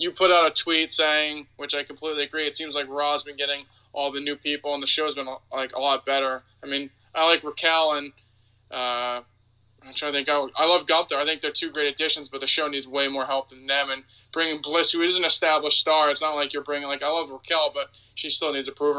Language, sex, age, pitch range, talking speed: English, male, 20-39, 130-155 Hz, 255 wpm